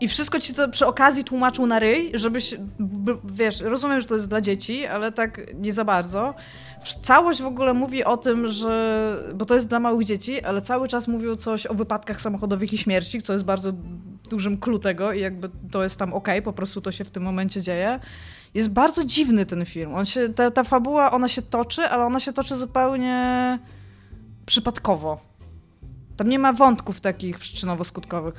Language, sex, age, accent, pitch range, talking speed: Polish, female, 20-39, native, 200-255 Hz, 190 wpm